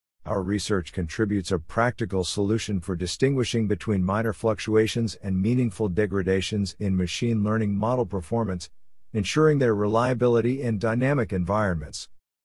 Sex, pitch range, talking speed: male, 90-115 Hz, 120 wpm